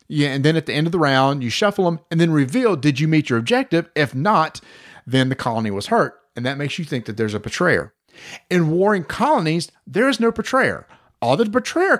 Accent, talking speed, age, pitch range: American, 230 wpm, 40-59, 150-215 Hz